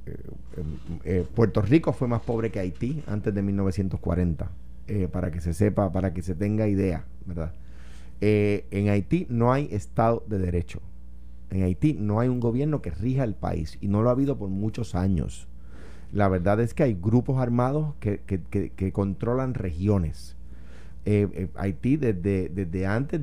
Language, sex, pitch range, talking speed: Spanish, male, 90-125 Hz, 180 wpm